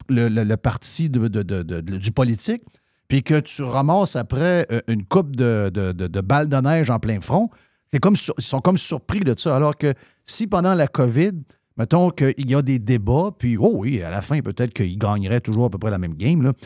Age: 50-69